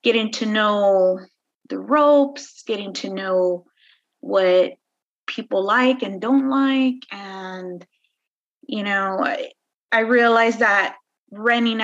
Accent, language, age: American, English, 20-39